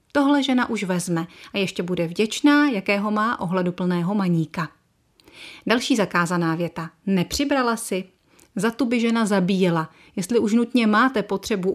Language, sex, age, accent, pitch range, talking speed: Czech, female, 30-49, native, 185-225 Hz, 145 wpm